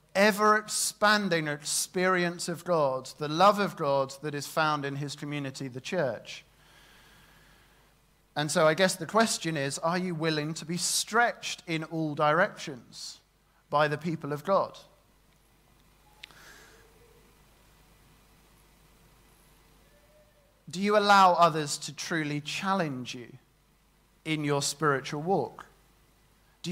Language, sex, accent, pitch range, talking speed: English, male, British, 150-180 Hz, 110 wpm